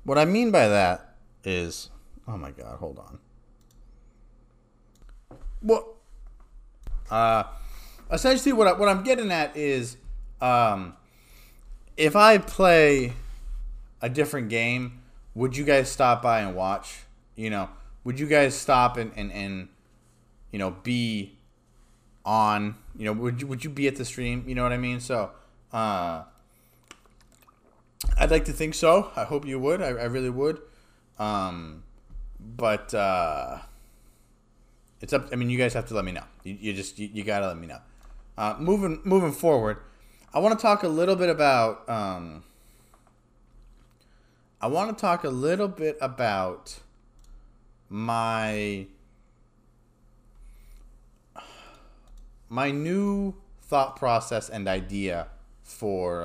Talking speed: 140 wpm